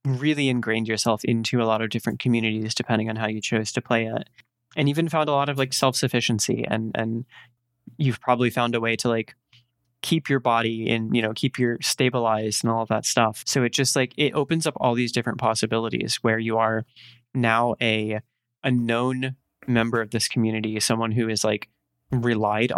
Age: 20-39